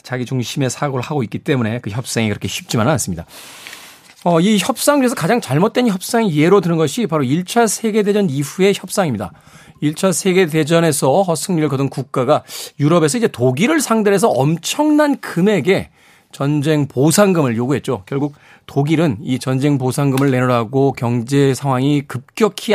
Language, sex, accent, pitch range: Korean, male, native, 130-190 Hz